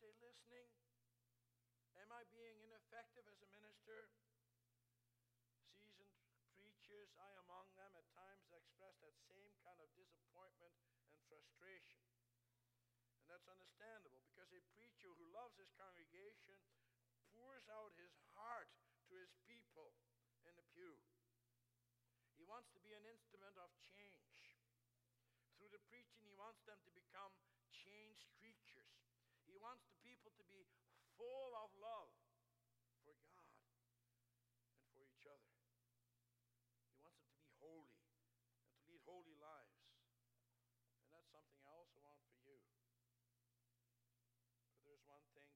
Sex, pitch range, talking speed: male, 120-190 Hz, 130 wpm